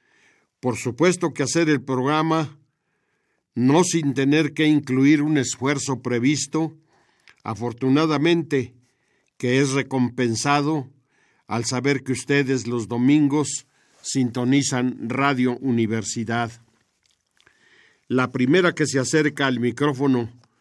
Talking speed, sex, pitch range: 100 wpm, male, 125-145 Hz